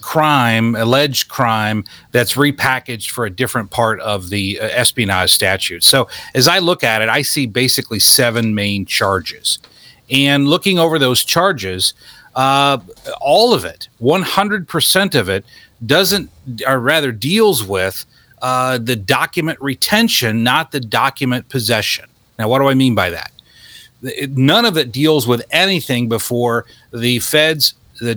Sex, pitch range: male, 115-145 Hz